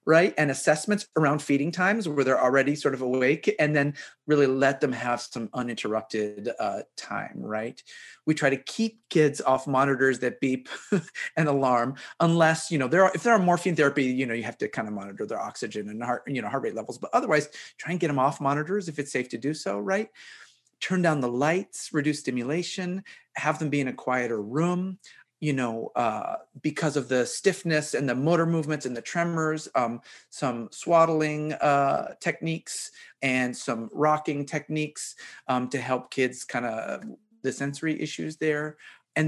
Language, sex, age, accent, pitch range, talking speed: English, male, 30-49, American, 125-160 Hz, 190 wpm